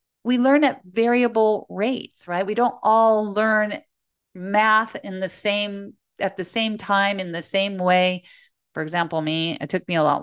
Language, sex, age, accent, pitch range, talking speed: English, female, 40-59, American, 175-225 Hz, 175 wpm